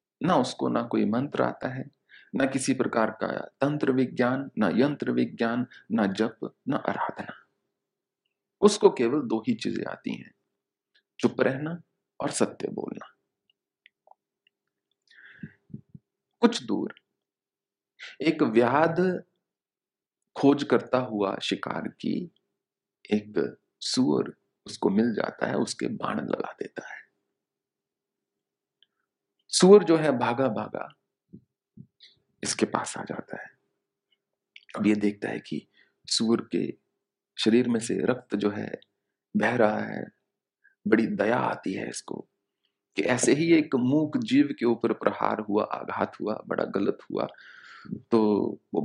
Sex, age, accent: male, 40-59, Indian